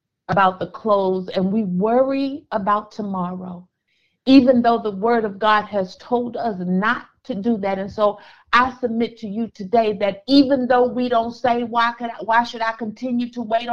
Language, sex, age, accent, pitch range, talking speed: English, female, 50-69, American, 195-255 Hz, 190 wpm